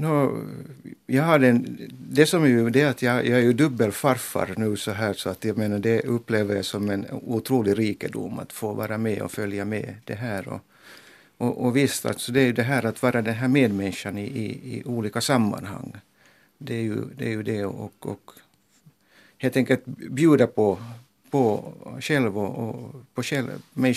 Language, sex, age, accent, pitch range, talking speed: Finnish, male, 60-79, native, 105-130 Hz, 165 wpm